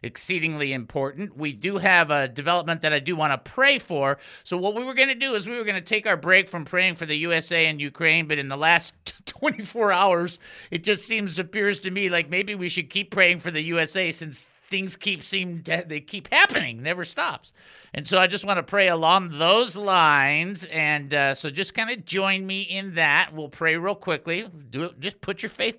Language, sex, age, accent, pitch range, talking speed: English, male, 50-69, American, 150-195 Hz, 225 wpm